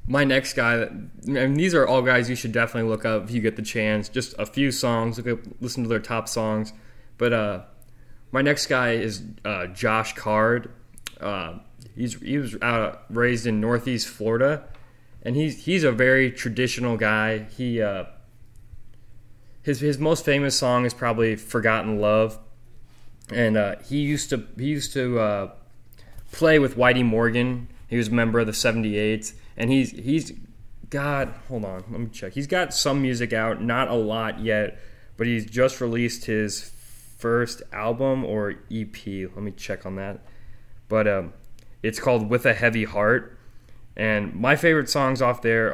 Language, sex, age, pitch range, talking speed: English, male, 20-39, 110-125 Hz, 170 wpm